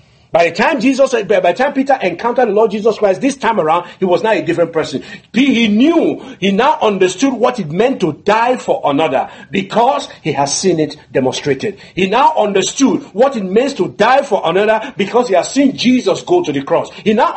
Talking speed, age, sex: 200 wpm, 50-69, male